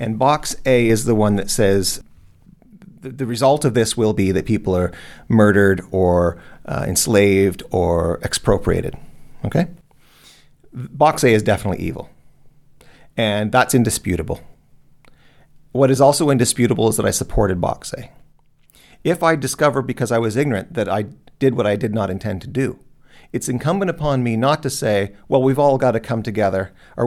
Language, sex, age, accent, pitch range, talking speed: English, male, 40-59, American, 100-140 Hz, 165 wpm